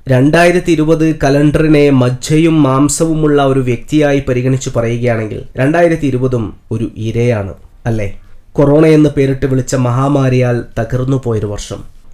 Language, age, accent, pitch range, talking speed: Malayalam, 20-39, native, 120-150 Hz, 110 wpm